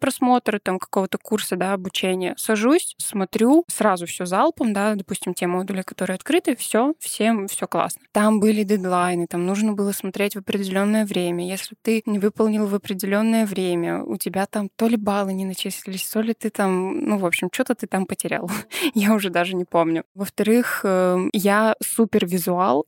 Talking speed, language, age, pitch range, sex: 175 wpm, Russian, 20-39, 185-220 Hz, female